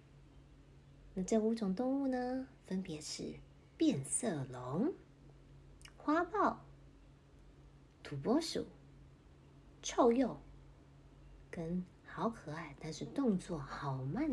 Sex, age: female, 30-49